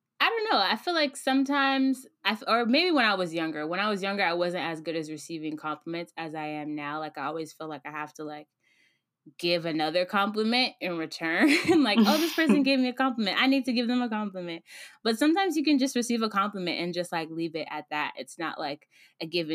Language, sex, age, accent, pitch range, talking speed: English, female, 10-29, American, 150-200 Hz, 235 wpm